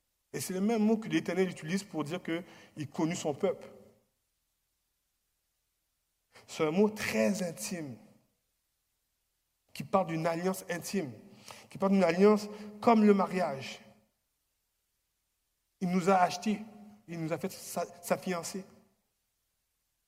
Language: French